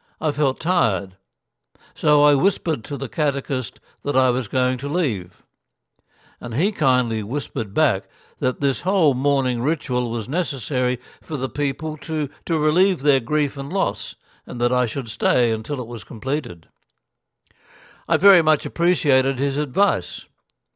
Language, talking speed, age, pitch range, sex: English, 150 wpm, 60-79, 125-155 Hz, male